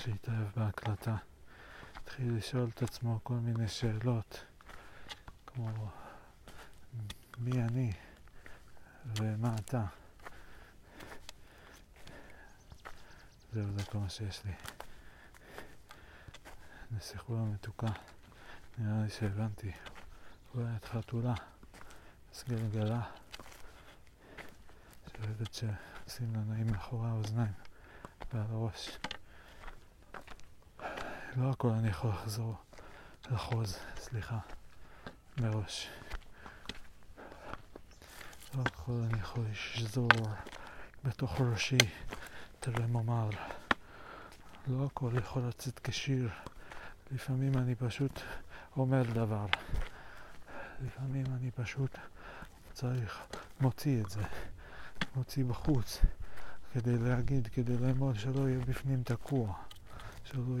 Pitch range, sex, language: 105-125 Hz, male, Hebrew